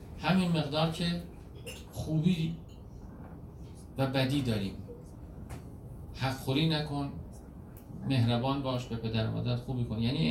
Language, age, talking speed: Persian, 50-69, 110 wpm